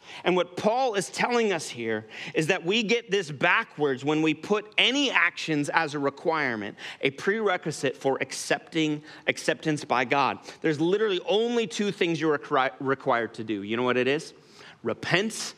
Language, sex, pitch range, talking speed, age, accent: English, male, 140-185 Hz, 170 wpm, 30-49, American